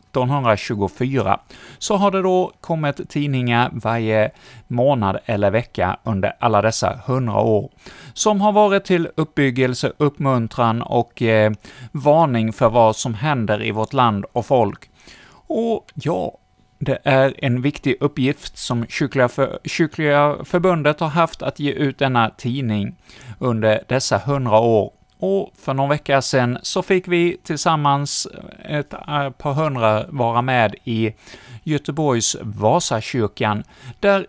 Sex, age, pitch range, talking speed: male, 30-49, 115-155 Hz, 130 wpm